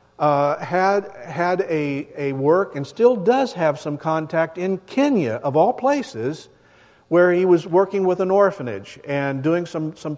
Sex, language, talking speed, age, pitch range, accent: male, English, 165 wpm, 50-69, 140-185 Hz, American